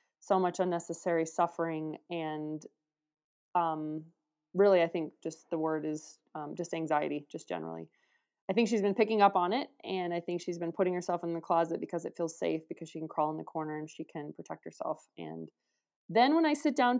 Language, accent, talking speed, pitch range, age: English, American, 205 wpm, 155-180 Hz, 20-39